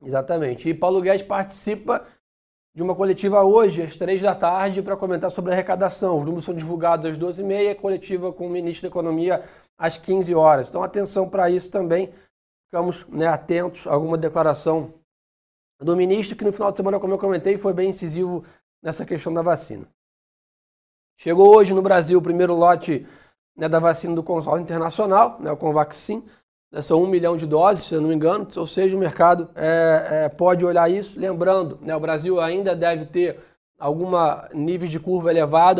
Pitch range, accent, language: 165-190 Hz, Brazilian, Portuguese